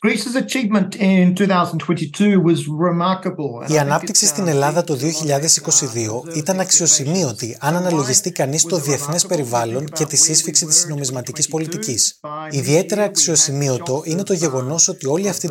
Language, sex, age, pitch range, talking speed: Greek, male, 20-39, 140-175 Hz, 110 wpm